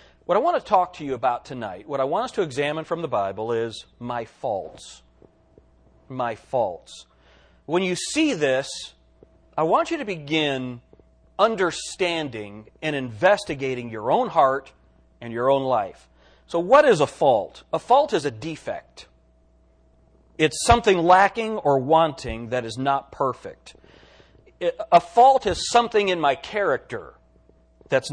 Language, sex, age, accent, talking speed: English, male, 40-59, American, 145 wpm